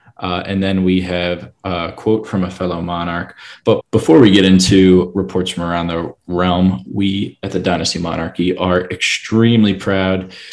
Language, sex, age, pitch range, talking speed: English, male, 20-39, 90-110 Hz, 165 wpm